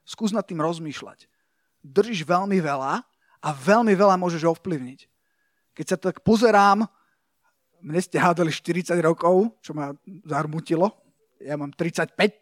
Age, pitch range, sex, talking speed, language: 30-49, 175-220 Hz, male, 130 wpm, Slovak